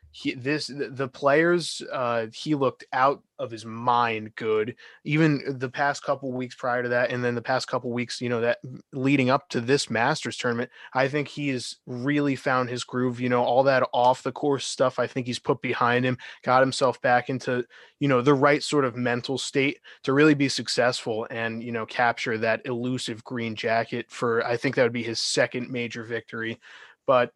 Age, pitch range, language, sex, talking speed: 20-39, 120-140 Hz, English, male, 200 wpm